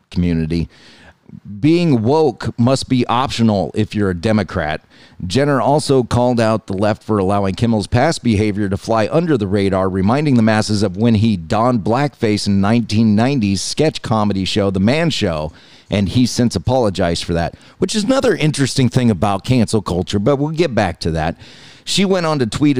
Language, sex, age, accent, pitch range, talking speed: English, male, 40-59, American, 100-125 Hz, 175 wpm